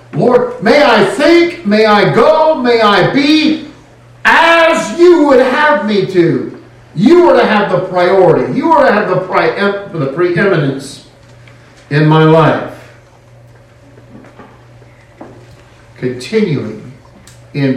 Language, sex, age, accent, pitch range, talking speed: English, male, 50-69, American, 120-185 Hz, 110 wpm